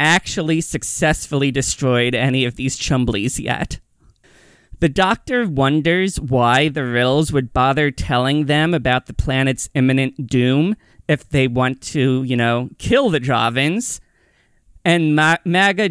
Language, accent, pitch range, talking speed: English, American, 125-160 Hz, 130 wpm